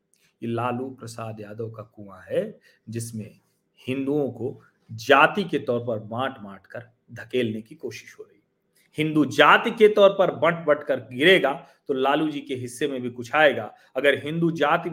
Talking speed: 170 wpm